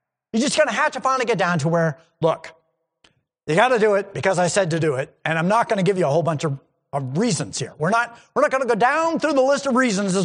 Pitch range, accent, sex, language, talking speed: 165-265 Hz, American, male, English, 310 wpm